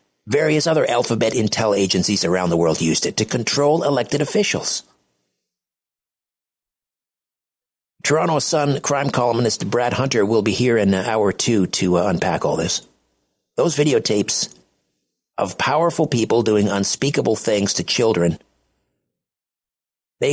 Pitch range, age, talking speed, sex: 105-140 Hz, 50-69, 125 wpm, male